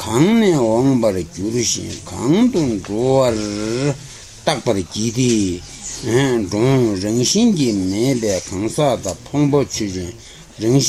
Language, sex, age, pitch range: Italian, male, 60-79, 95-130 Hz